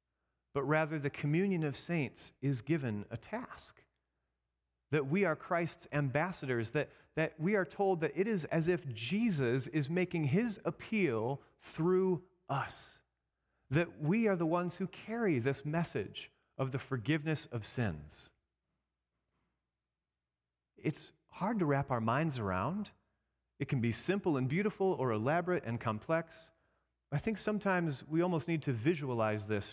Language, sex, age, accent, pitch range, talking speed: English, male, 30-49, American, 105-165 Hz, 145 wpm